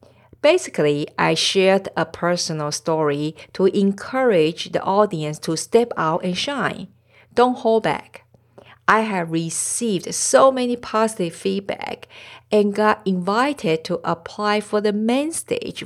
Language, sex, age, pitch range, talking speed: English, female, 50-69, 150-230 Hz, 130 wpm